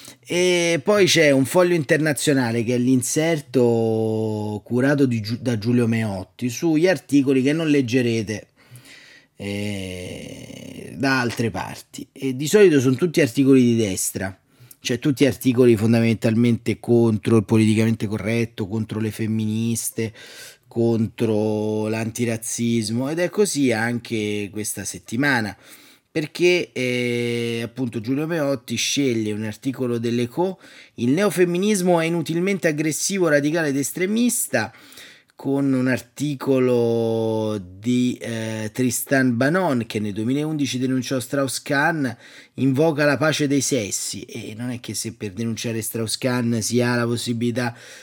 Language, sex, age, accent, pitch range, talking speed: Italian, male, 30-49, native, 115-140 Hz, 120 wpm